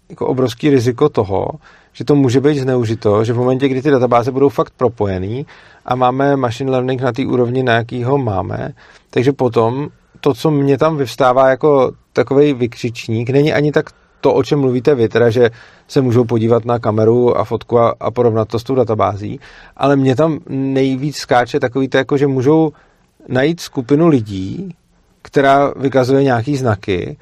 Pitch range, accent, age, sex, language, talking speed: 120-140 Hz, native, 40-59, male, Czech, 175 wpm